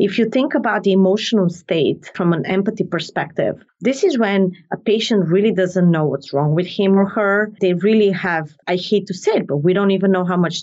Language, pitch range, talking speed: English, 170-210 Hz, 225 wpm